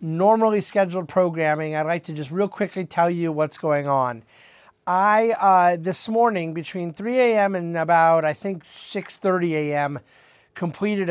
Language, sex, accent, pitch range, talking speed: English, male, American, 150-185 Hz, 150 wpm